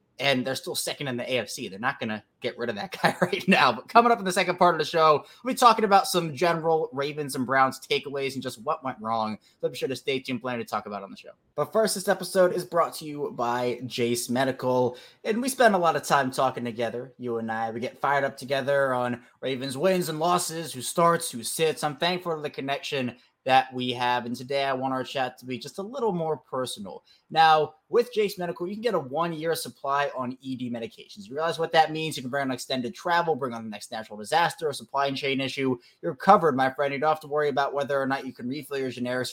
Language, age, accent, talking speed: English, 20-39, American, 255 wpm